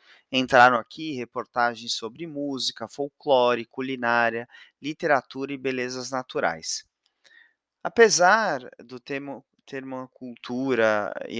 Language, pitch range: Portuguese, 120-155 Hz